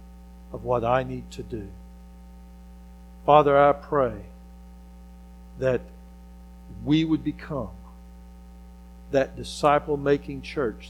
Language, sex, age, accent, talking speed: English, male, 60-79, American, 95 wpm